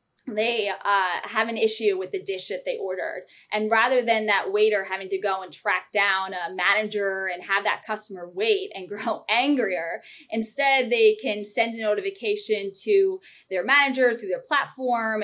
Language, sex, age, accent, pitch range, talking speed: English, female, 20-39, American, 195-250 Hz, 175 wpm